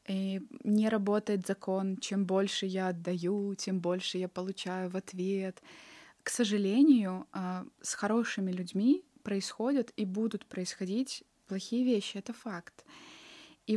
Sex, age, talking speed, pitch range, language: female, 20-39, 120 wpm, 195-240 Hz, Russian